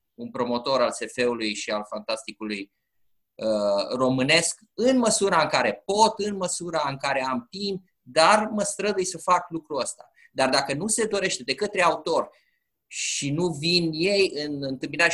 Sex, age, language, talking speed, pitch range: male, 20-39, Romanian, 165 wpm, 130-195 Hz